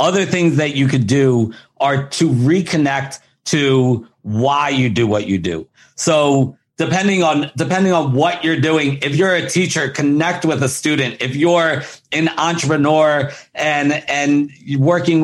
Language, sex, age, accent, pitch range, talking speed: English, male, 50-69, American, 130-160 Hz, 155 wpm